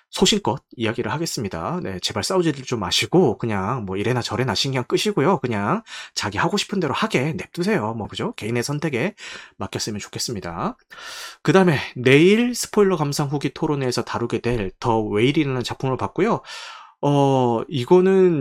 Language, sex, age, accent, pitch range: Korean, male, 20-39, native, 115-175 Hz